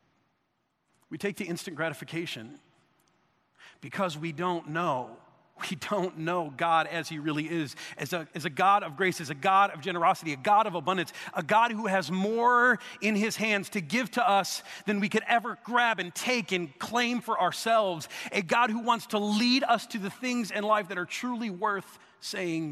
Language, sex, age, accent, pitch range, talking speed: English, male, 40-59, American, 170-220 Hz, 190 wpm